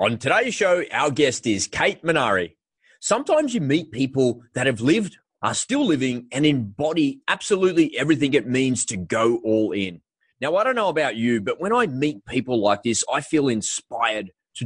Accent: Australian